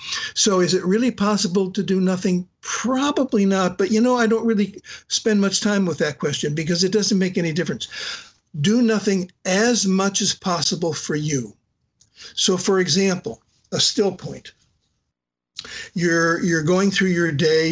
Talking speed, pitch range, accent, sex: 165 wpm, 155-200 Hz, American, male